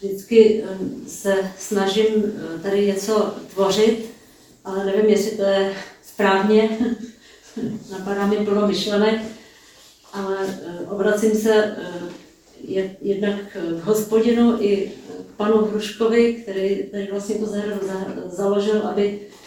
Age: 40-59